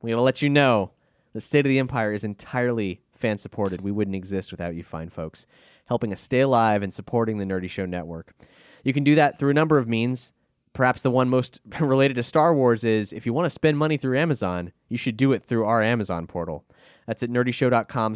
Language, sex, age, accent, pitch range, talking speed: English, male, 20-39, American, 110-150 Hz, 220 wpm